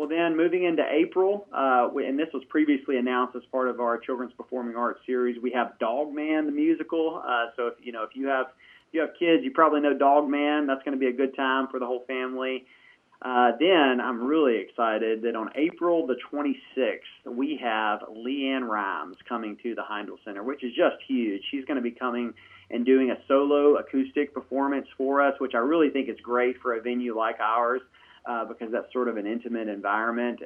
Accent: American